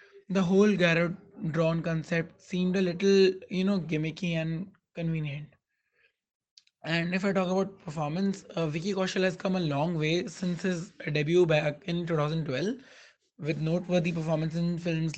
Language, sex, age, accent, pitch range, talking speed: English, male, 20-39, Indian, 160-190 Hz, 150 wpm